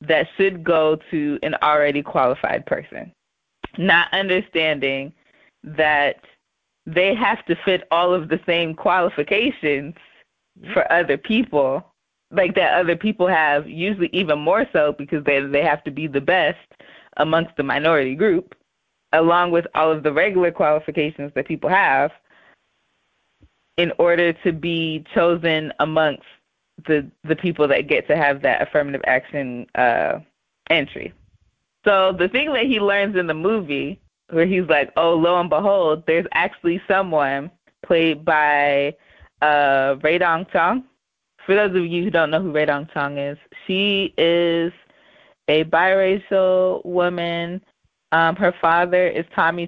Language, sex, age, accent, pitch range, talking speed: English, female, 20-39, American, 150-180 Hz, 145 wpm